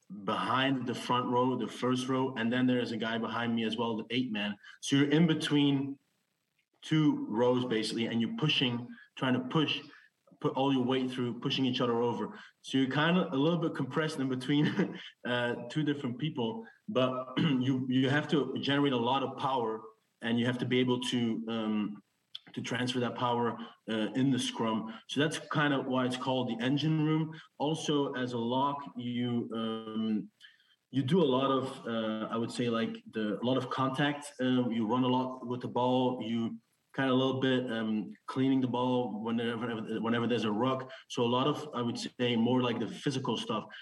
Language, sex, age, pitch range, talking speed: English, male, 30-49, 115-135 Hz, 200 wpm